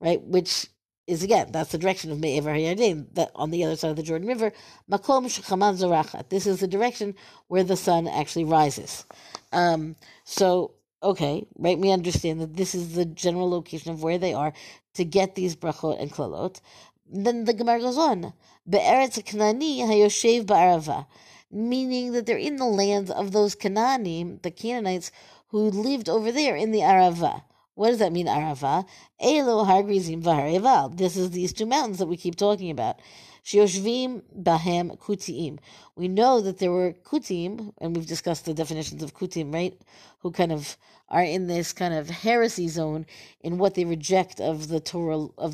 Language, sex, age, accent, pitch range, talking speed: English, female, 50-69, American, 165-210 Hz, 170 wpm